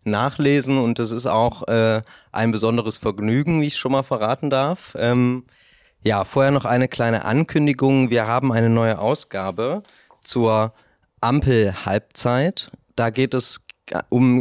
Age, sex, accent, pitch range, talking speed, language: 30-49, male, German, 110-130 Hz, 135 wpm, German